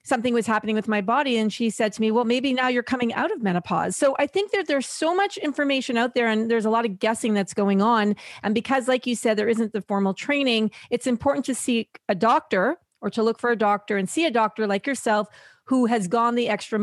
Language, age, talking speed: English, 40-59, 255 wpm